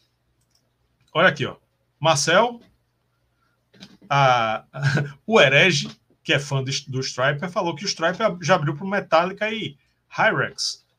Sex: male